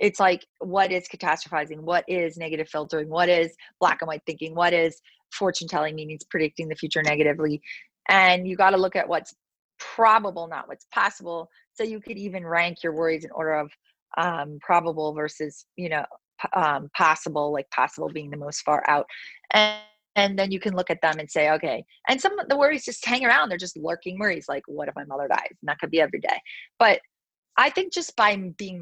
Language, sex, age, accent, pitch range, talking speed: English, female, 30-49, American, 155-195 Hz, 210 wpm